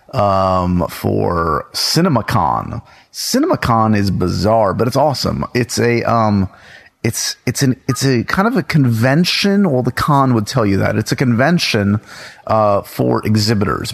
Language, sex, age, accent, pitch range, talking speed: English, male, 30-49, American, 100-130 Hz, 145 wpm